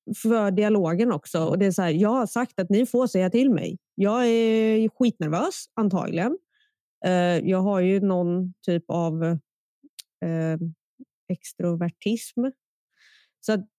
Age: 20-39